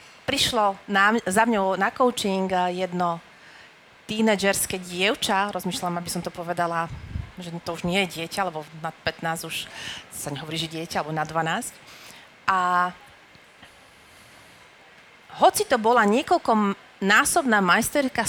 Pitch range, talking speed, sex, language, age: 185-230 Hz, 120 wpm, female, Slovak, 30-49